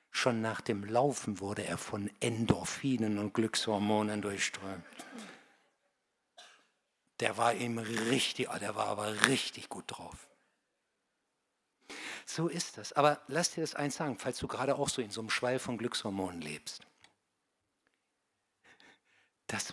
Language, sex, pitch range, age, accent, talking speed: German, male, 110-135 Hz, 60-79, German, 130 wpm